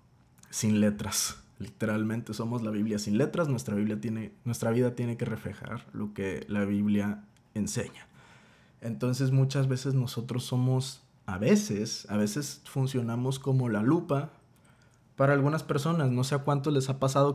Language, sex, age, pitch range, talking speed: Spanish, male, 20-39, 120-145 Hz, 150 wpm